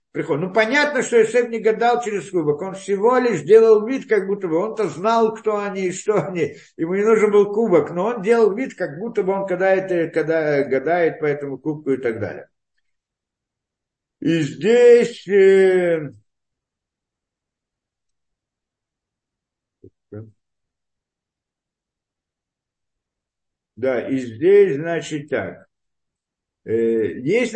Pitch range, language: 135-225 Hz, Russian